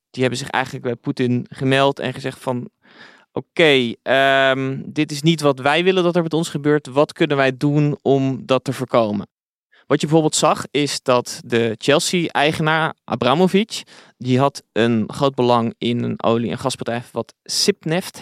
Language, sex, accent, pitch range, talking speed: Dutch, male, Dutch, 120-145 Hz, 170 wpm